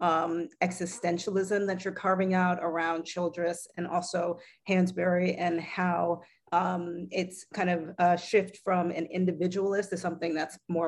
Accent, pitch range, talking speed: American, 170-205 Hz, 145 wpm